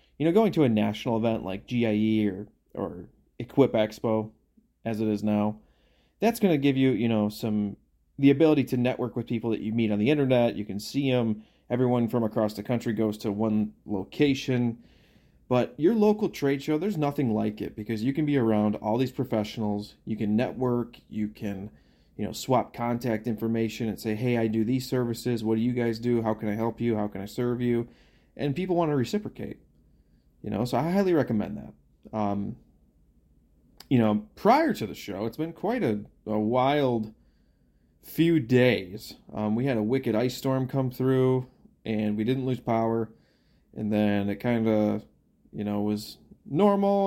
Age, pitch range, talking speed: 30-49, 105-130 Hz, 190 wpm